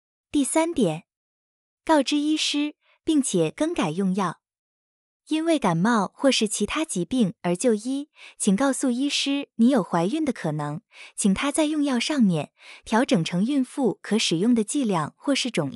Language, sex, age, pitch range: Chinese, female, 20-39, 200-280 Hz